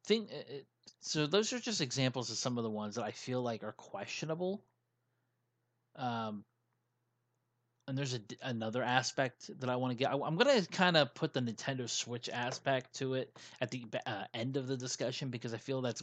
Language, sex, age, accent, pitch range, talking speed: English, male, 30-49, American, 120-135 Hz, 185 wpm